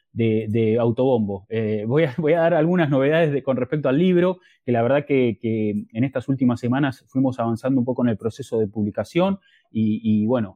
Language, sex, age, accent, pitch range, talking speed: English, male, 20-39, Argentinian, 120-170 Hz, 200 wpm